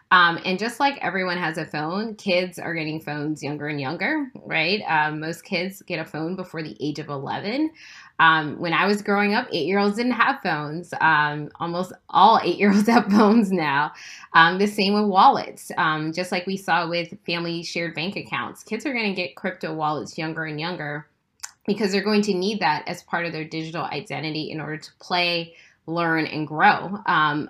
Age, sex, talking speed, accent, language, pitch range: 10-29, female, 195 wpm, American, English, 155-200 Hz